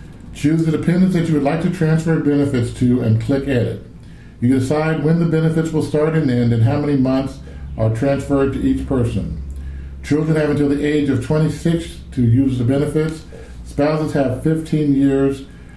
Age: 50-69